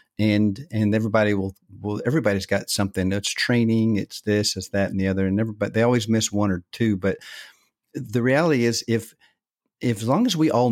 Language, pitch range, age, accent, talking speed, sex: English, 95-115 Hz, 50-69, American, 205 wpm, male